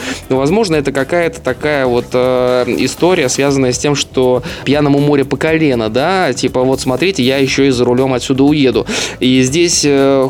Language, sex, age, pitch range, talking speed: Russian, male, 20-39, 125-135 Hz, 170 wpm